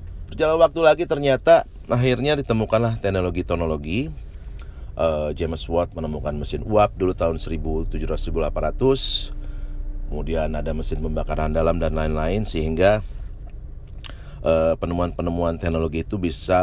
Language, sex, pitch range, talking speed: Malay, male, 80-100 Hz, 105 wpm